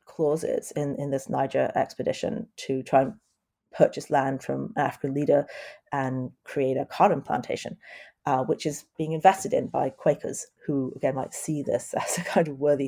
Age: 40-59